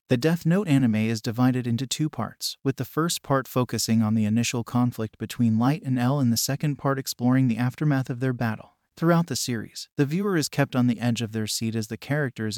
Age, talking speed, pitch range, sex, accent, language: 30-49, 230 wpm, 115-140 Hz, male, American, English